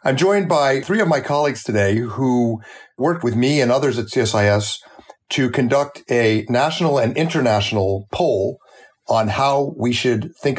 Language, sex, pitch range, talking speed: English, male, 110-135 Hz, 160 wpm